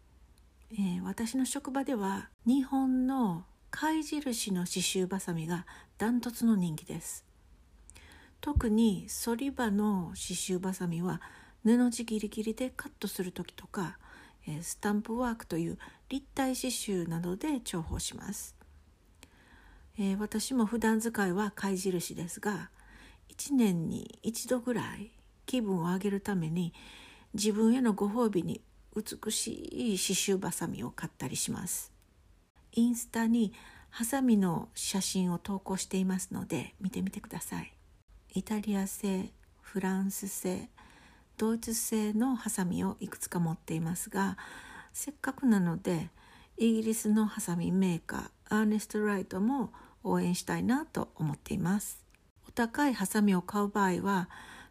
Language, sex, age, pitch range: English, female, 60-79, 180-230 Hz